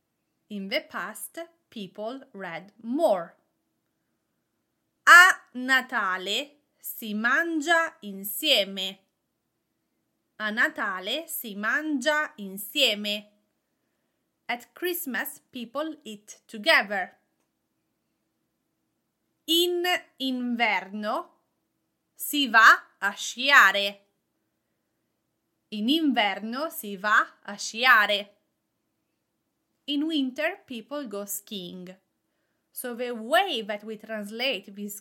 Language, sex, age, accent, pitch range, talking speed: English, female, 30-49, Italian, 210-295 Hz, 75 wpm